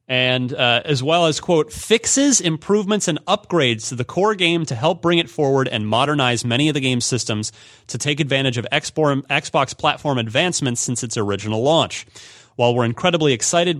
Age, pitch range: 30-49, 115-155 Hz